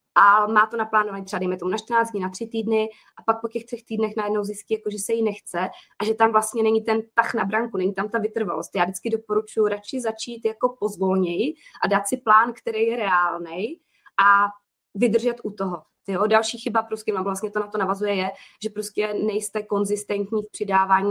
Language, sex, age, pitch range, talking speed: Czech, female, 20-39, 200-225 Hz, 205 wpm